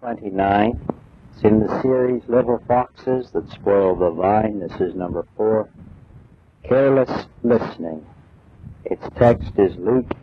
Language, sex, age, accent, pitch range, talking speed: English, male, 60-79, American, 110-160 Hz, 130 wpm